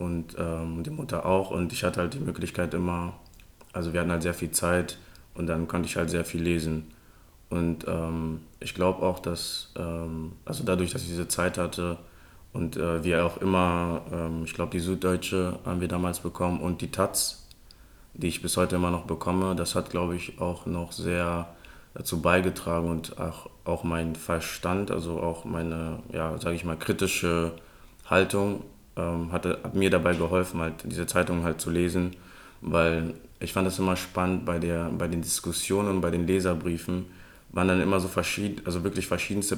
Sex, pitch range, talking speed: male, 85-90 Hz, 185 wpm